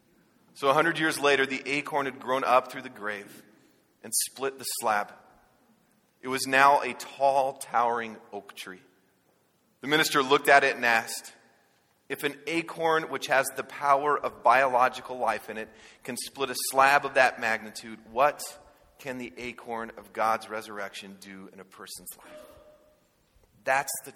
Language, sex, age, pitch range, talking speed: English, male, 30-49, 110-135 Hz, 160 wpm